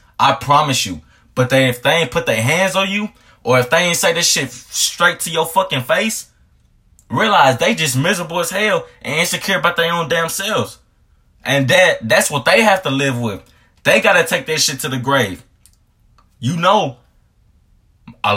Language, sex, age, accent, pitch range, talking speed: English, male, 20-39, American, 115-170 Hz, 190 wpm